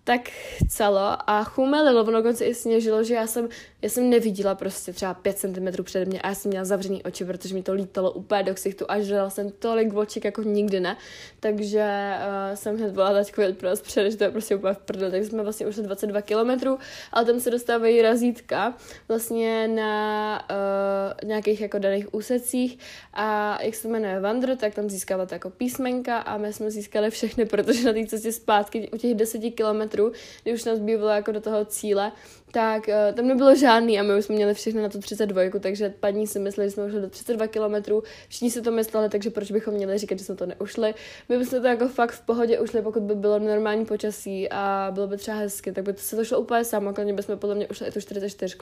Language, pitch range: Czech, 200-225 Hz